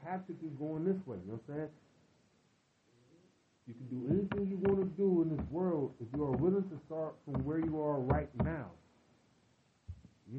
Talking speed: 200 wpm